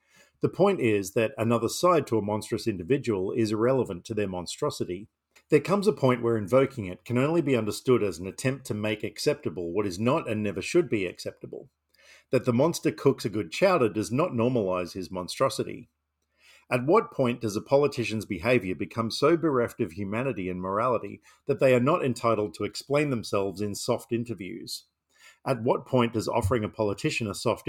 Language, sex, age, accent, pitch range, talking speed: English, male, 50-69, Australian, 100-130 Hz, 185 wpm